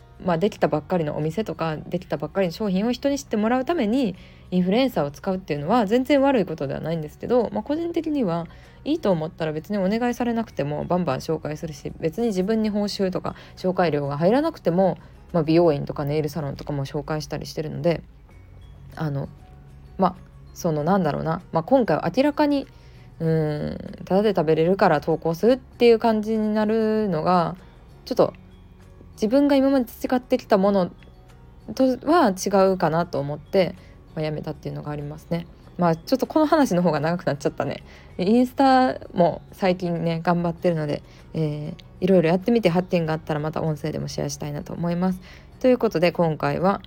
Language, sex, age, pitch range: Japanese, female, 20-39, 155-215 Hz